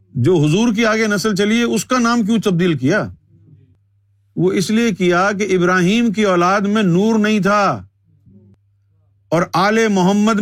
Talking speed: 160 wpm